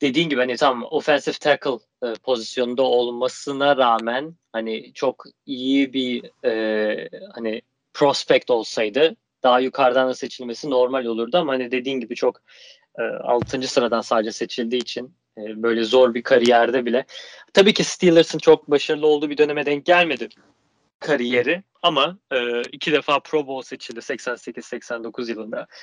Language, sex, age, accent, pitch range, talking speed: Turkish, male, 30-49, native, 120-150 Hz, 140 wpm